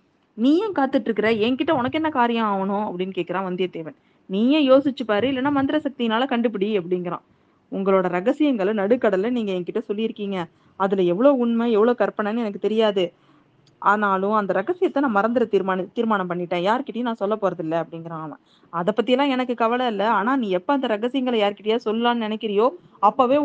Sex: female